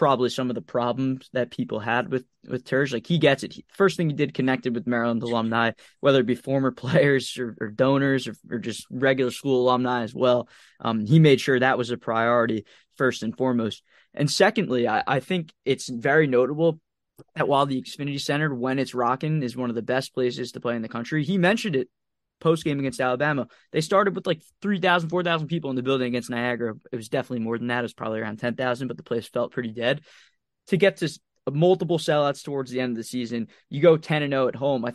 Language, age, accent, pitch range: English, 20-39, American, 125-145 Hz